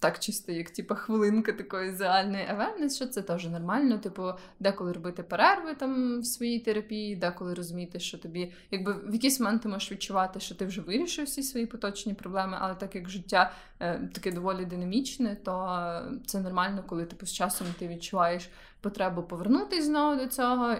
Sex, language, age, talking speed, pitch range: female, Ukrainian, 20-39, 175 wpm, 180-225 Hz